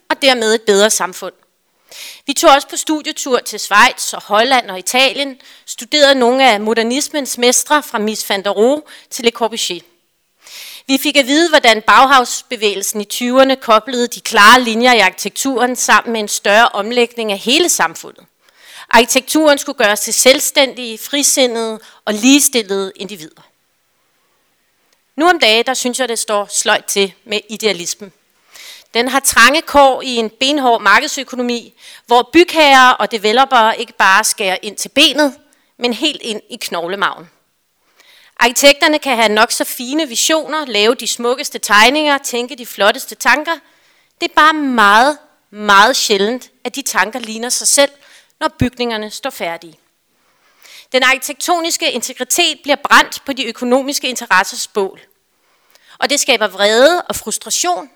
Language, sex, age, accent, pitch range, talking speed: Danish, female, 30-49, native, 215-280 Hz, 145 wpm